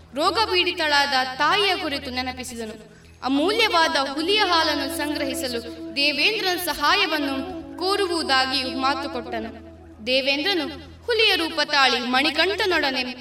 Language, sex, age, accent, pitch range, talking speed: Kannada, female, 20-39, native, 270-365 Hz, 75 wpm